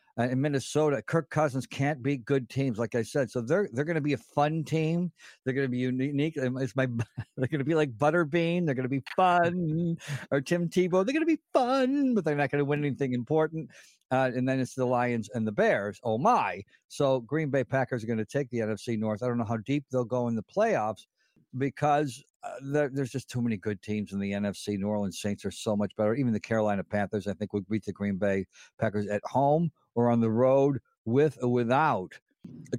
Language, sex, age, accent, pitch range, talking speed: English, male, 50-69, American, 110-140 Hz, 230 wpm